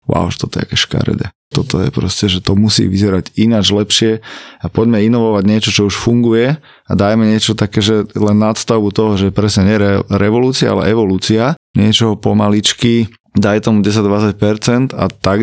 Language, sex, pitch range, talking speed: Slovak, male, 100-110 Hz, 165 wpm